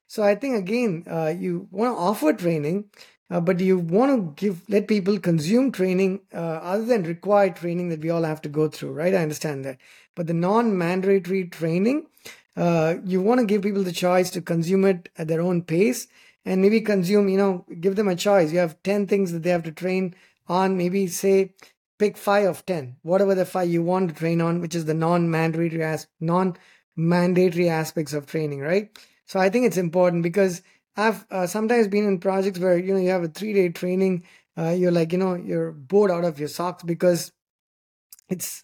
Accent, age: Indian, 20-39